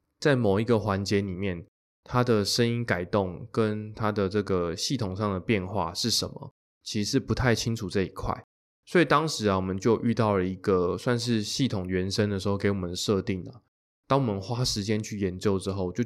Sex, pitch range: male, 95-120 Hz